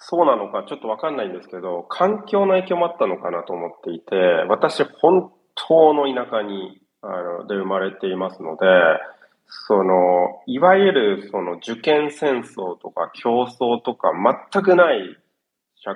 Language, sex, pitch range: Japanese, male, 115-185 Hz